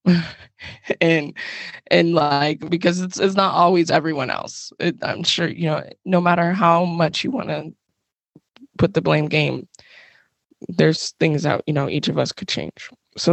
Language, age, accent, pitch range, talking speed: English, 20-39, American, 155-190 Hz, 165 wpm